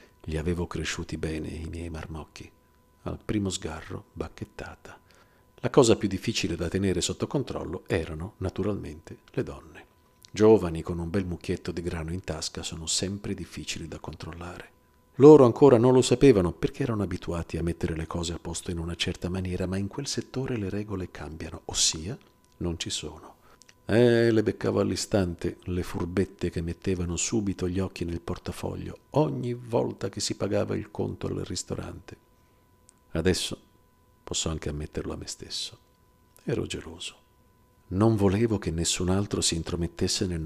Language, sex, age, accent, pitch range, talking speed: Italian, male, 50-69, native, 85-105 Hz, 155 wpm